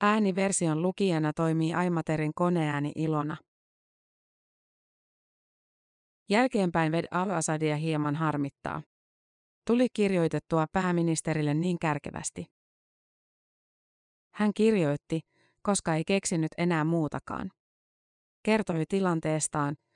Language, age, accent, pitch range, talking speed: Finnish, 30-49, native, 155-180 Hz, 75 wpm